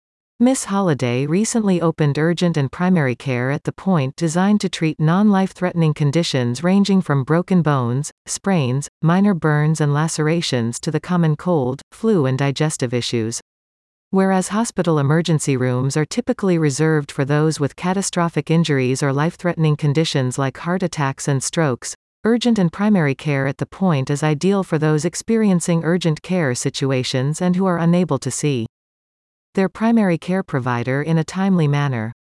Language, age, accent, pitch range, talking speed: English, 40-59, American, 135-180 Hz, 155 wpm